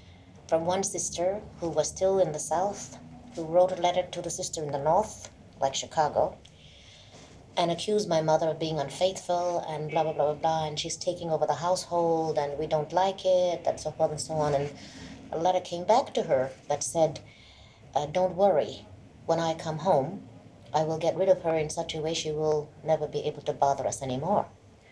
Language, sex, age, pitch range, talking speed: English, female, 30-49, 145-185 Hz, 205 wpm